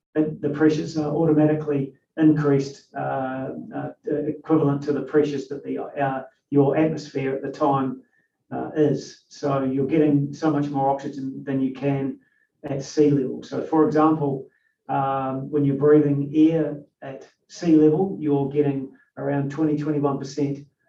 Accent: Australian